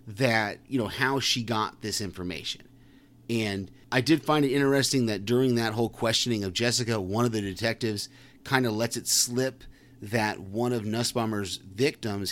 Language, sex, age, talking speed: English, male, 30-49, 170 wpm